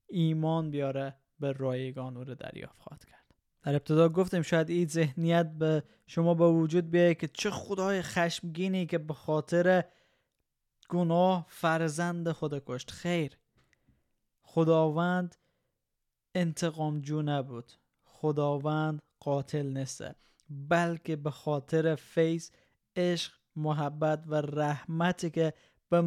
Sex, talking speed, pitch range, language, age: male, 110 wpm, 145-165 Hz, Persian, 20-39